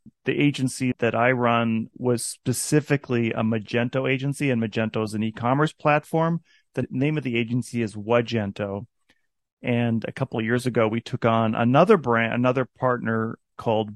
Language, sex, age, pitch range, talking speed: English, male, 30-49, 115-140 Hz, 160 wpm